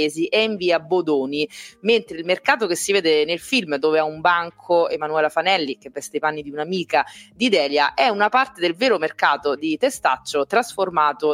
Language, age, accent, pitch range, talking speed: Italian, 30-49, native, 155-205 Hz, 185 wpm